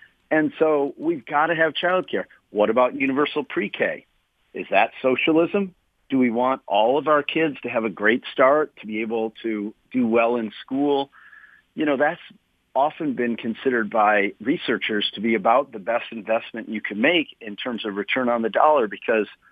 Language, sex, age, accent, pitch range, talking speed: English, male, 40-59, American, 115-170 Hz, 180 wpm